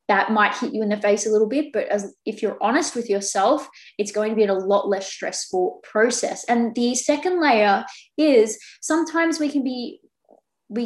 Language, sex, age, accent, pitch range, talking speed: English, female, 20-39, Australian, 200-235 Hz, 200 wpm